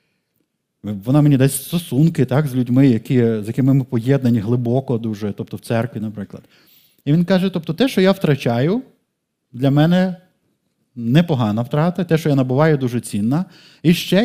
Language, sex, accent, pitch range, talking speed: Ukrainian, male, native, 120-165 Hz, 150 wpm